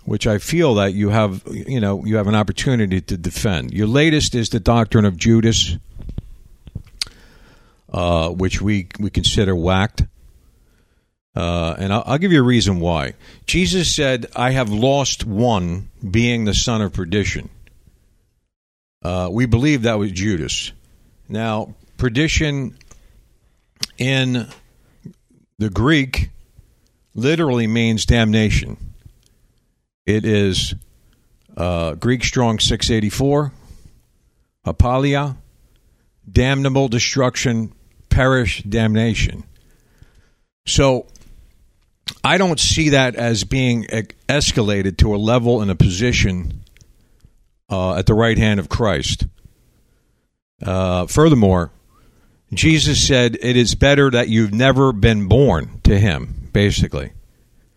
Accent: American